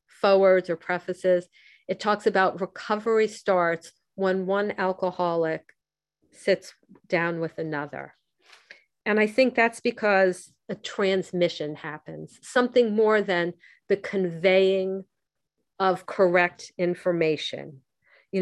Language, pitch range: English, 175-205 Hz